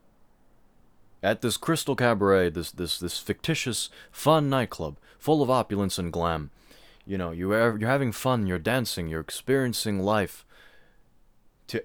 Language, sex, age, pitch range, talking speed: English, male, 20-39, 85-115 Hz, 140 wpm